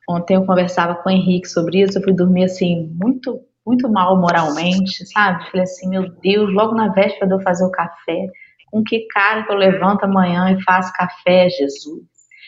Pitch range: 185-275 Hz